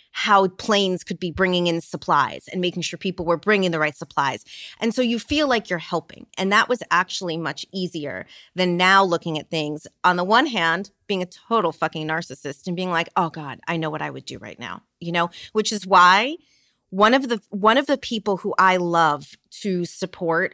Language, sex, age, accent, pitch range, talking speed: English, female, 30-49, American, 165-205 Hz, 215 wpm